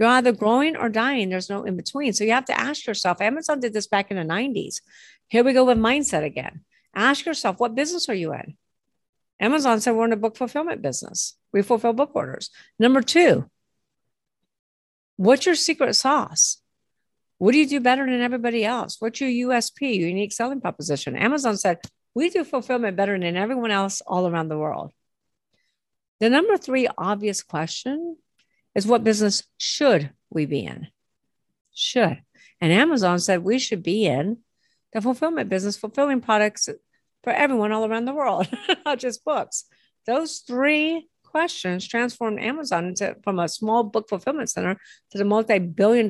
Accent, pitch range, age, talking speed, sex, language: American, 200-275 Hz, 50-69, 165 wpm, female, English